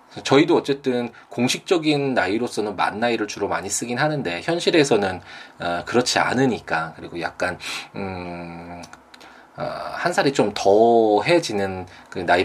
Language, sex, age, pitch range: Korean, male, 20-39, 90-135 Hz